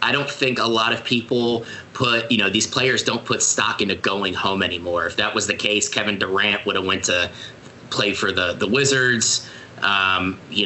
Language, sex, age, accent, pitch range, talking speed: English, male, 30-49, American, 100-125 Hz, 210 wpm